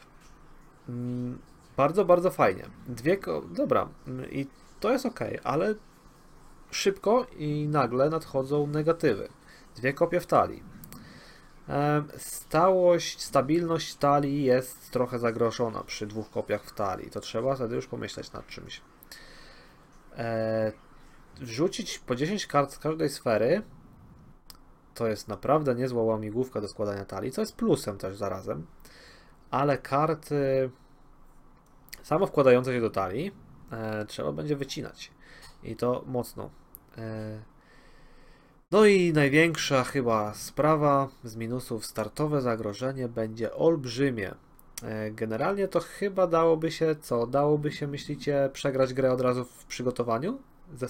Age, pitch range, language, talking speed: 30-49, 115-155 Hz, Polish, 115 wpm